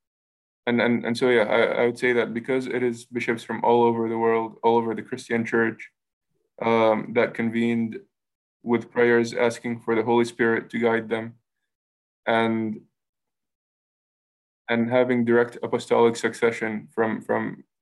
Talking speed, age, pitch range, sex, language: 150 wpm, 20-39, 115-125 Hz, male, English